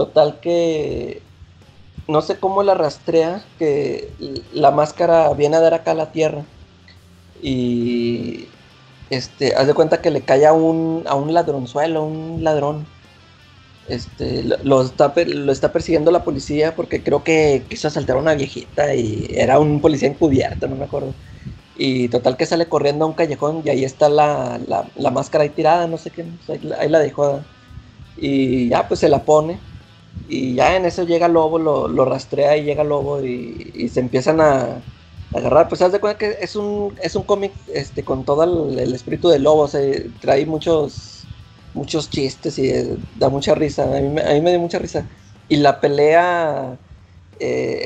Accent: Mexican